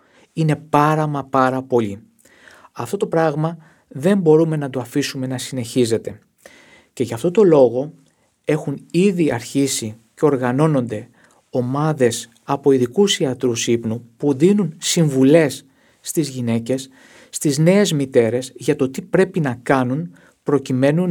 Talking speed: 130 wpm